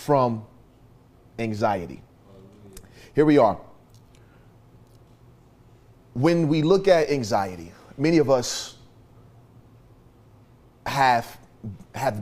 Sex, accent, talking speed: male, American, 75 wpm